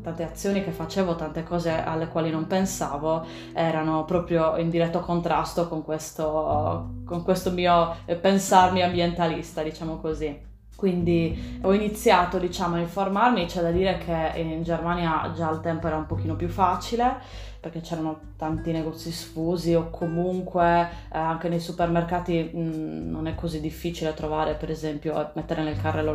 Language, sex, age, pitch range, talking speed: Italian, female, 20-39, 160-180 Hz, 150 wpm